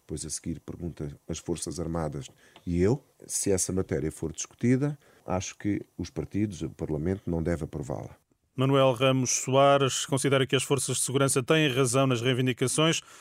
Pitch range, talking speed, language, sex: 125-140 Hz, 165 wpm, Portuguese, male